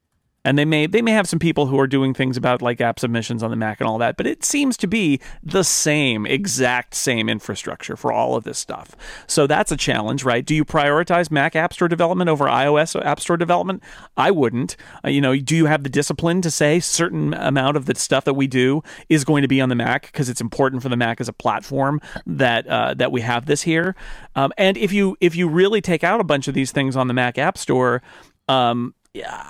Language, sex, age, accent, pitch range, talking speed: English, male, 40-59, American, 125-170 Hz, 240 wpm